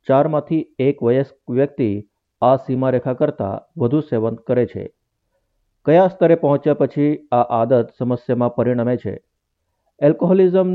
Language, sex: Gujarati, male